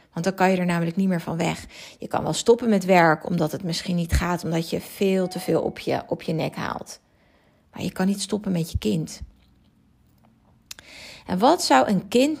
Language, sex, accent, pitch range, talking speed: Dutch, female, Dutch, 175-210 Hz, 215 wpm